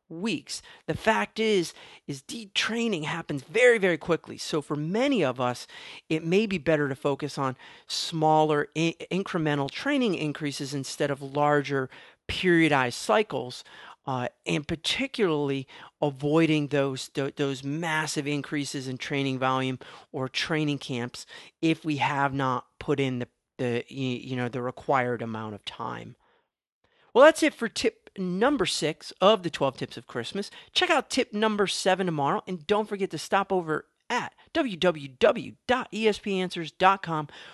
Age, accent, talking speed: 40-59, American, 145 wpm